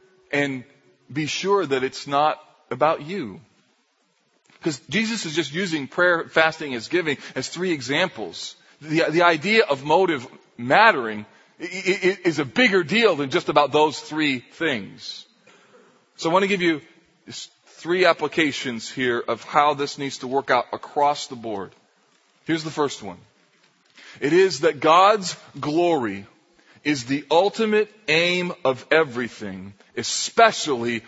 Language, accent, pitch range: English, American, 145-200 Hz